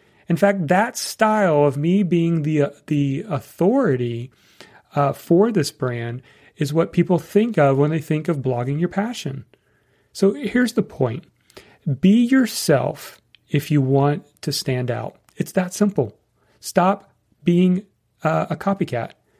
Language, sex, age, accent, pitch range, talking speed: English, male, 40-59, American, 140-200 Hz, 145 wpm